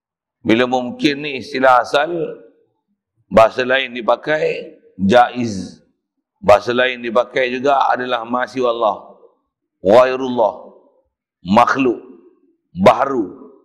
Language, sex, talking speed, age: Malay, male, 80 wpm, 50-69